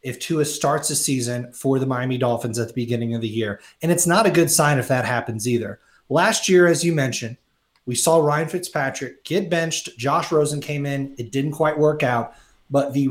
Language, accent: English, American